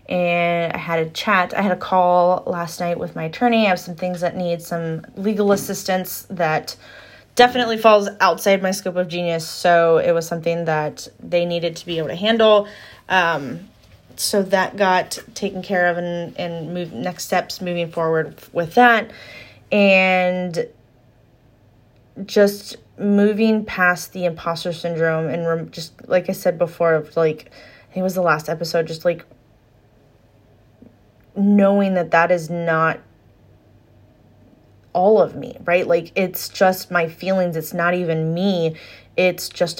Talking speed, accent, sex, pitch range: 150 wpm, American, female, 160-195 Hz